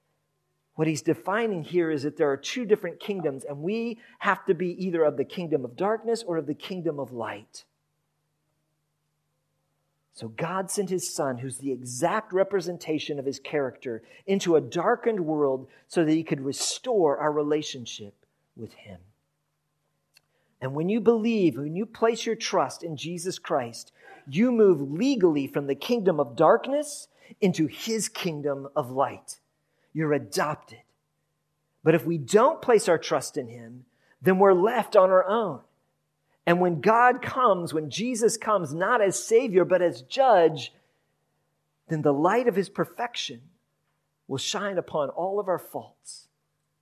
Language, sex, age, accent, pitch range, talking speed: English, male, 50-69, American, 145-190 Hz, 155 wpm